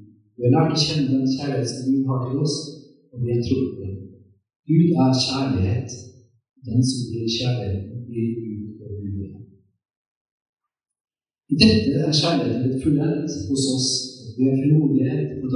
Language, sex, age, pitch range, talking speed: English, male, 50-69, 110-140 Hz, 125 wpm